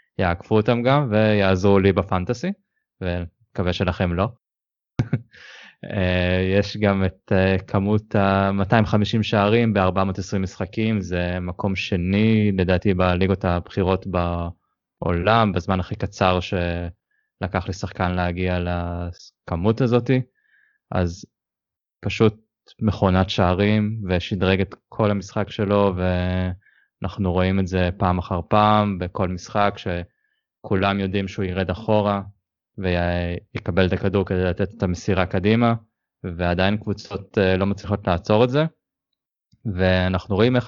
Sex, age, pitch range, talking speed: male, 20-39, 90-105 Hz, 110 wpm